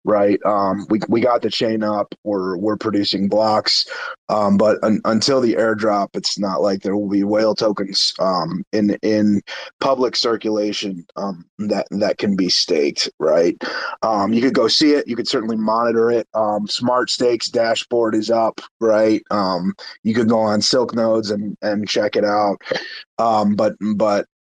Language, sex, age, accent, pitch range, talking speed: English, male, 30-49, American, 105-120 Hz, 175 wpm